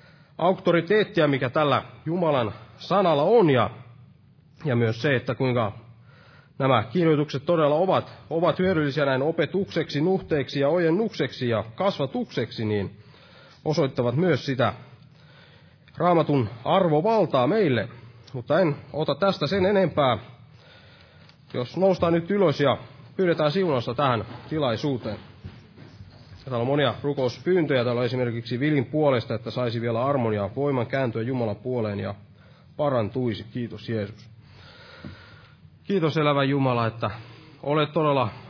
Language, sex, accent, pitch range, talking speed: Finnish, male, native, 120-155 Hz, 115 wpm